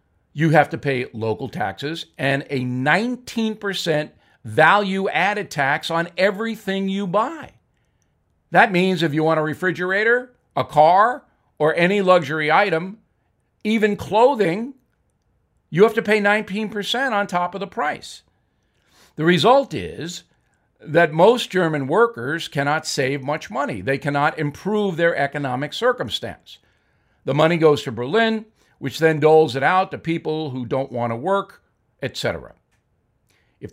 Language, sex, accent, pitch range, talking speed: English, male, American, 145-195 Hz, 135 wpm